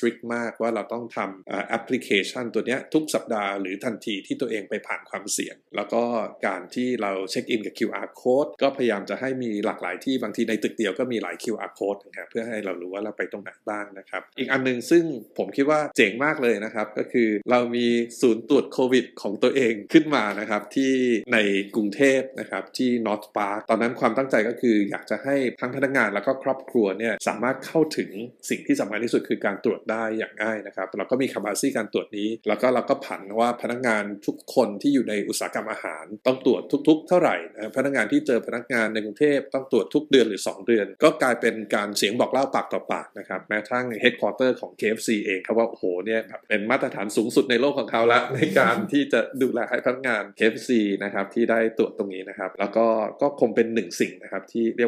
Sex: male